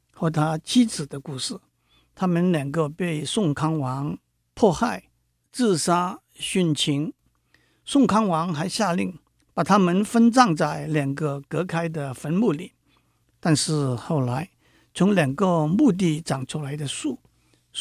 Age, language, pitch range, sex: 50-69, Chinese, 140-175 Hz, male